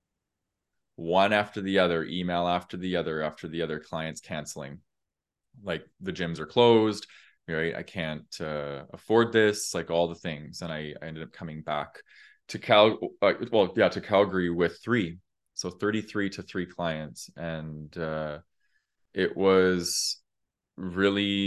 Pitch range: 80-95 Hz